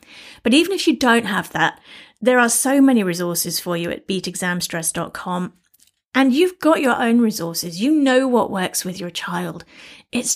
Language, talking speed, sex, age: English, 175 wpm, female, 30-49